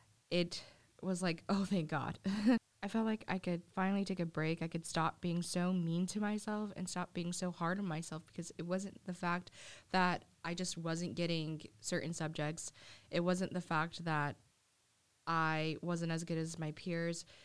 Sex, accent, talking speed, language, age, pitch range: female, American, 185 wpm, English, 20-39, 155-180 Hz